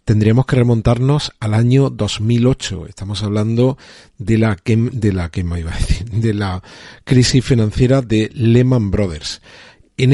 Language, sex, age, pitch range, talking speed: Spanish, male, 40-59, 100-125 Hz, 155 wpm